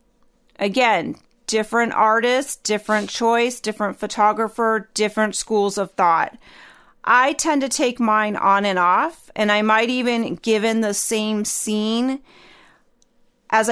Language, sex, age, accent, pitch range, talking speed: English, female, 30-49, American, 200-245 Hz, 125 wpm